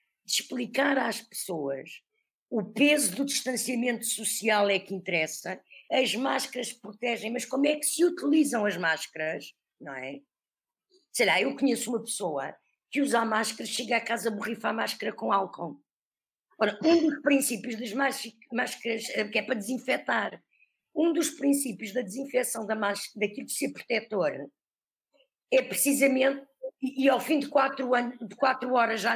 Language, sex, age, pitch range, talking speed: Portuguese, female, 50-69, 210-270 Hz, 155 wpm